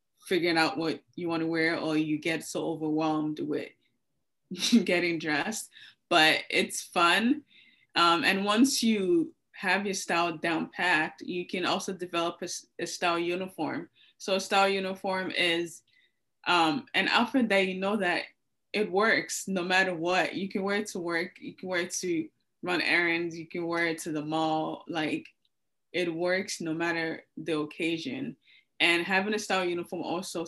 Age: 20-39